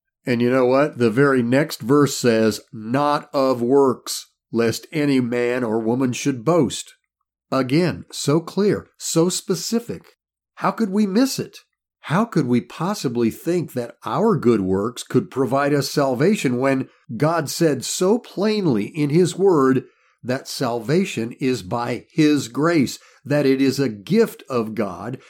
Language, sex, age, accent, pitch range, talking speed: English, male, 50-69, American, 120-160 Hz, 150 wpm